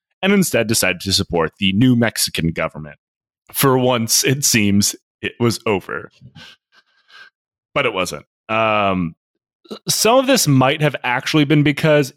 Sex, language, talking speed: male, English, 140 wpm